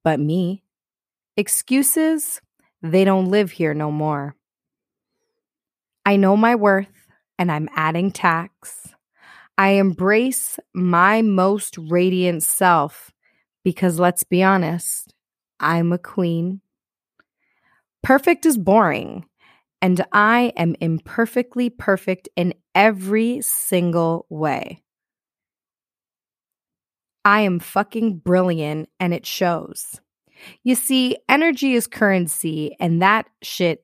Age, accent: 20-39, American